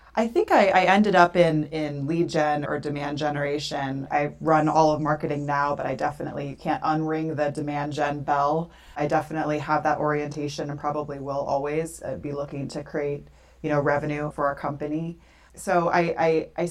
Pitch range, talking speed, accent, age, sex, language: 145-165 Hz, 185 wpm, American, 30-49, female, English